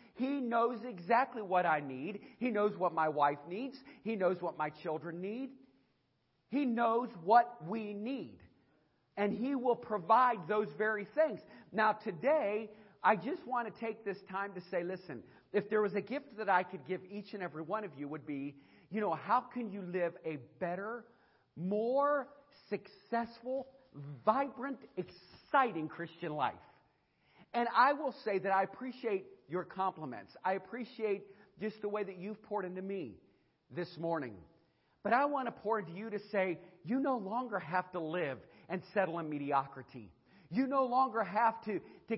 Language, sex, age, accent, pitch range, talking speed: English, male, 50-69, American, 175-235 Hz, 170 wpm